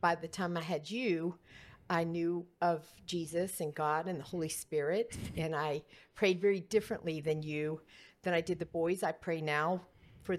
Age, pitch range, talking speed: 50-69, 160-195 Hz, 185 wpm